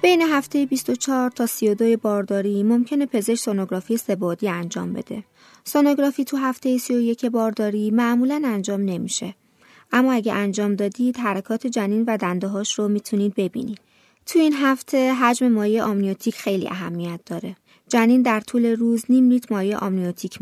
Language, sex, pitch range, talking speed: Persian, female, 200-245 Hz, 140 wpm